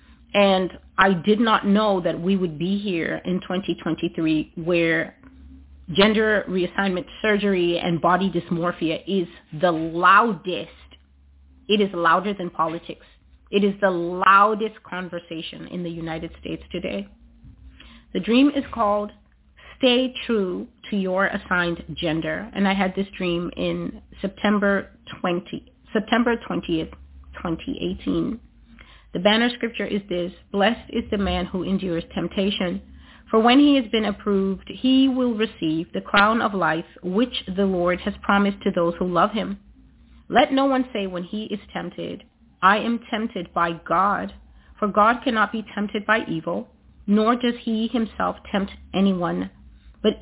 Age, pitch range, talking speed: 30-49, 170-215 Hz, 145 wpm